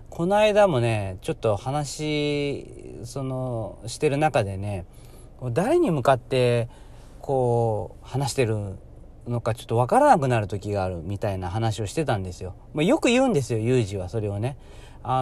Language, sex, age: Japanese, male, 40-59